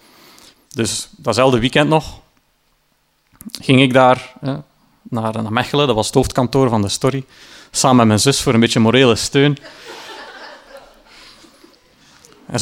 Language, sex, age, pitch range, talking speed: Dutch, male, 30-49, 120-145 Hz, 135 wpm